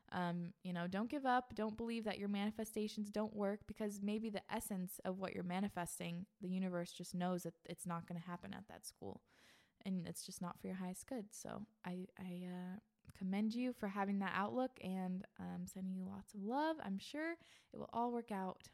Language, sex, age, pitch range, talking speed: English, female, 20-39, 190-230 Hz, 210 wpm